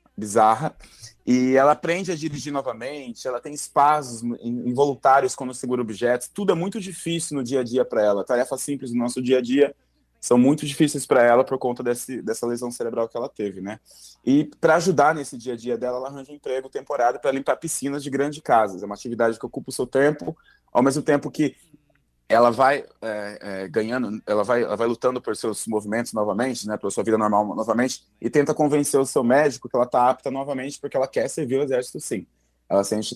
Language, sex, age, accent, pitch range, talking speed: Portuguese, male, 20-39, Brazilian, 120-150 Hz, 210 wpm